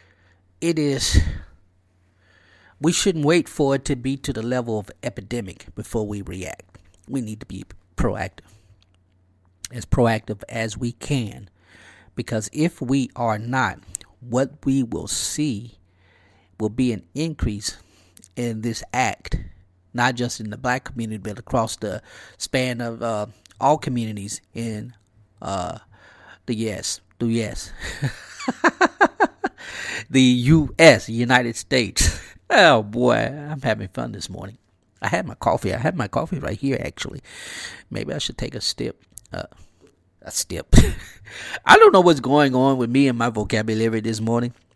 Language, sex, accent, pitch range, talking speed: English, male, American, 95-125 Hz, 145 wpm